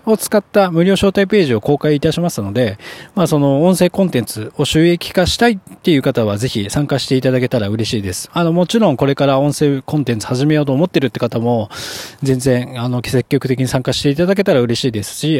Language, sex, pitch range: Japanese, male, 120-175 Hz